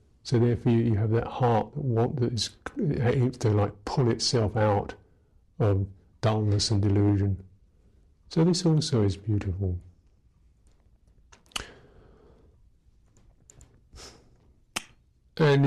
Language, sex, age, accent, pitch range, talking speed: English, male, 50-69, British, 100-125 Hz, 100 wpm